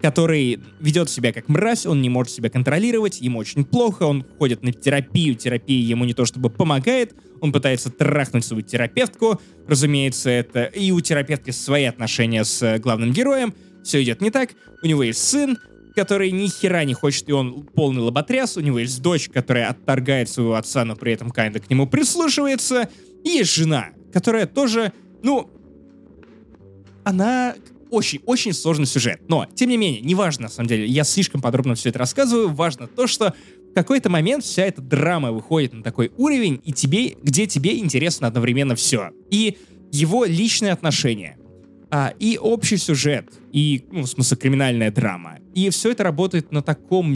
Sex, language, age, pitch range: male, Russian, 20-39, 125-190 Hz